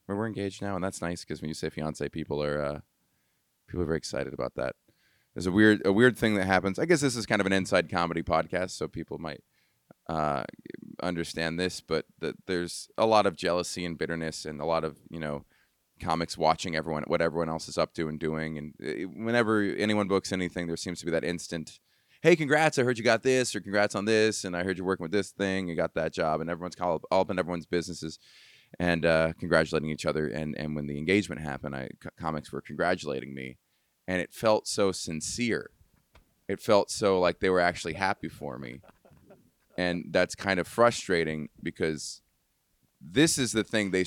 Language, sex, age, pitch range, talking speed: English, male, 20-39, 80-105 Hz, 215 wpm